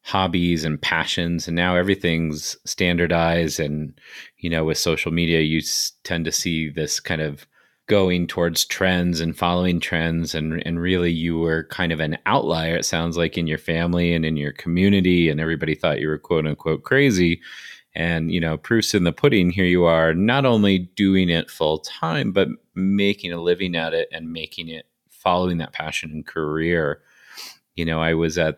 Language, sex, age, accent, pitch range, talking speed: English, male, 30-49, American, 80-90 Hz, 185 wpm